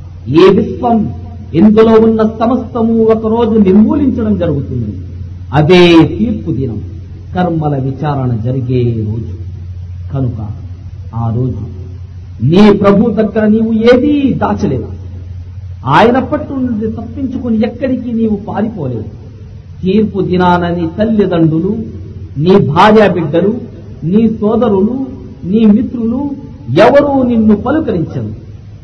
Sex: male